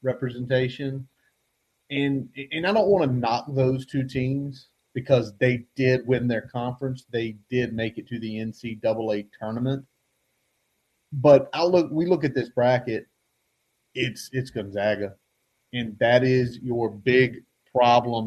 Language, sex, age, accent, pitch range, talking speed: English, male, 30-49, American, 115-135 Hz, 140 wpm